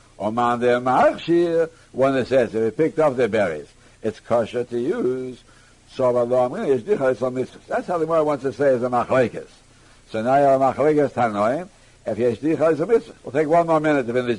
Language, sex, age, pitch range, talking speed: English, male, 60-79, 125-160 Hz, 180 wpm